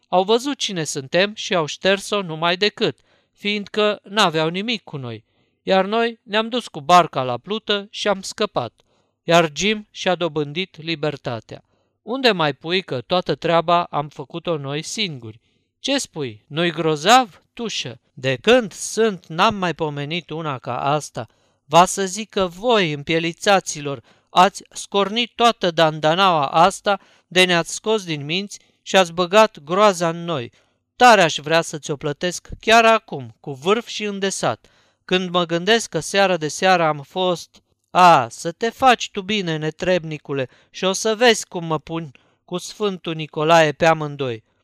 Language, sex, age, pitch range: Romanian, male, 50-69, 150-200 Hz